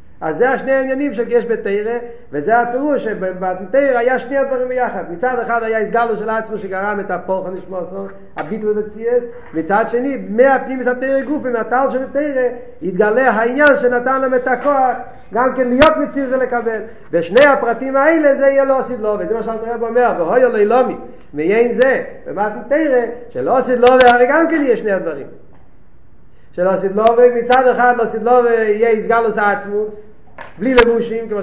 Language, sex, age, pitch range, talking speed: Hebrew, male, 50-69, 215-255 Hz, 150 wpm